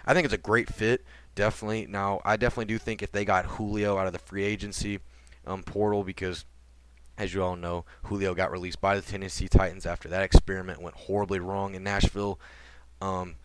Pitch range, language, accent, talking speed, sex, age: 85-100 Hz, English, American, 195 wpm, male, 20-39